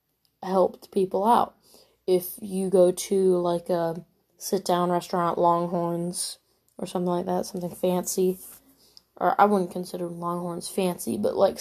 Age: 20-39